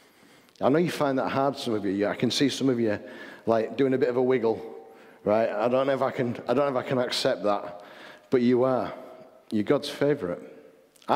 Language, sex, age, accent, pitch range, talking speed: English, male, 50-69, British, 105-130 Hz, 230 wpm